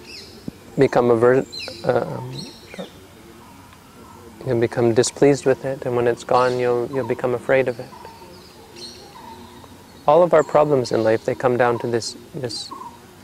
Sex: male